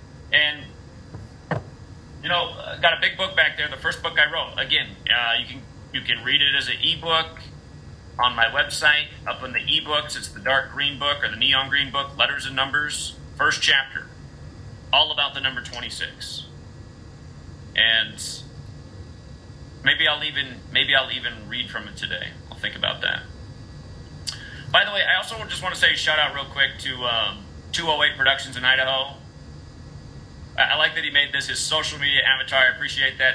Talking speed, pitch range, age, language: 185 wpm, 125-140 Hz, 30-49, English